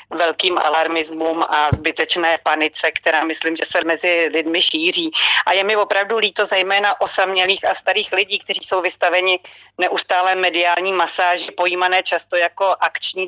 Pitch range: 170-200 Hz